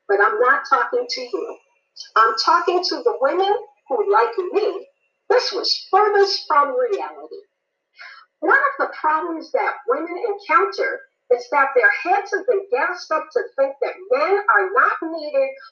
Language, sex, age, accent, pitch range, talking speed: English, female, 50-69, American, 320-440 Hz, 155 wpm